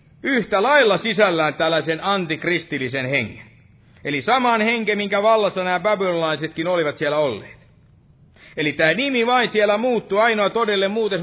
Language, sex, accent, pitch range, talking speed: Finnish, male, native, 150-200 Hz, 135 wpm